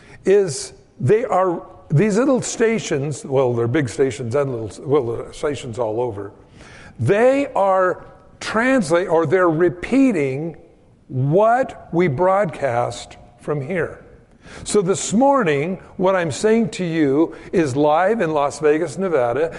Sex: male